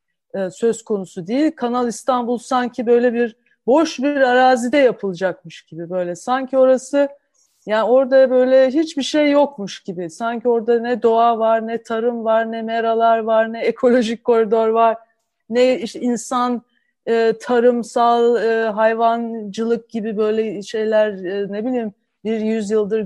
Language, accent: Turkish, native